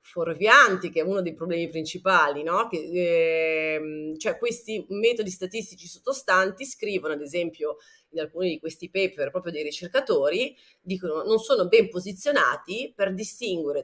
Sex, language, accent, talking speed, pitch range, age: female, Italian, native, 145 wpm, 160-220 Hz, 30-49